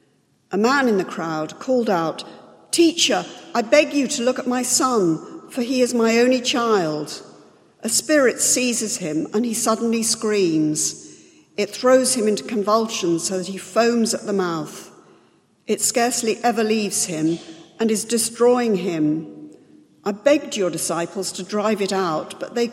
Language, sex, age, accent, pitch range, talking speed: English, female, 50-69, British, 170-225 Hz, 160 wpm